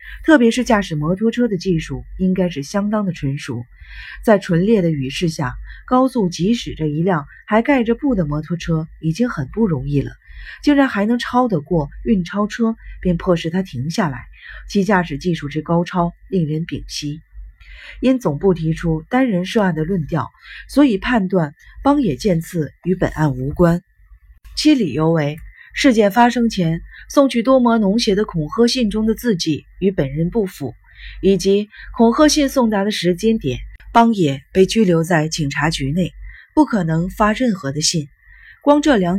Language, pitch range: Chinese, 155-225 Hz